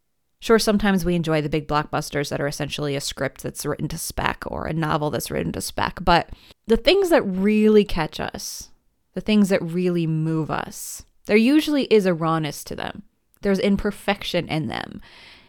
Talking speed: 180 wpm